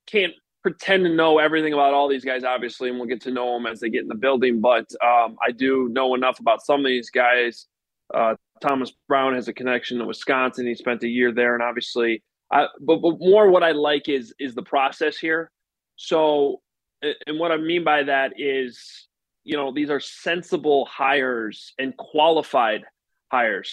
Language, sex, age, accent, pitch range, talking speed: English, male, 20-39, American, 125-150 Hz, 195 wpm